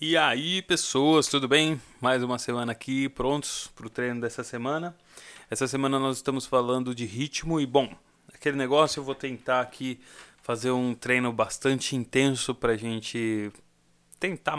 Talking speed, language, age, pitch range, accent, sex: 160 wpm, Portuguese, 20-39, 120-150 Hz, Brazilian, male